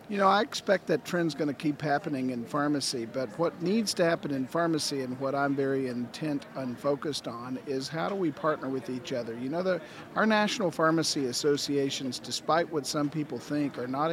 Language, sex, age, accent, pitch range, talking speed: English, male, 50-69, American, 140-160 Hz, 210 wpm